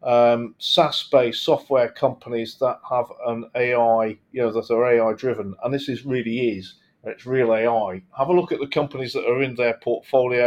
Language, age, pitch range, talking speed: English, 40-59, 115-140 Hz, 190 wpm